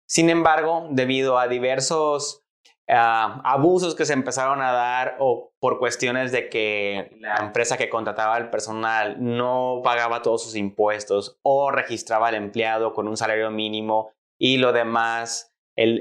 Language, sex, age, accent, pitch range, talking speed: Spanish, male, 20-39, Mexican, 110-130 Hz, 150 wpm